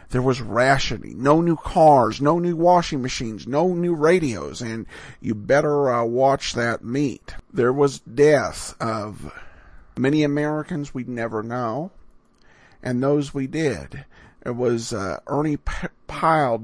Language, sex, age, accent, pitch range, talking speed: English, male, 50-69, American, 115-155 Hz, 135 wpm